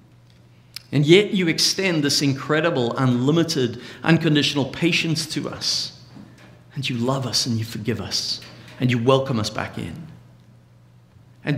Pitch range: 105-155 Hz